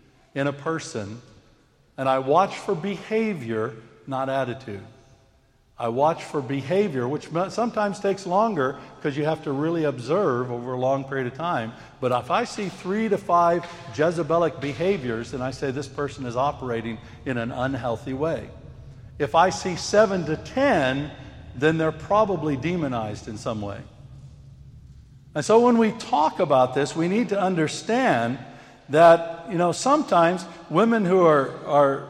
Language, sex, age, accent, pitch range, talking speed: English, male, 60-79, American, 130-180 Hz, 155 wpm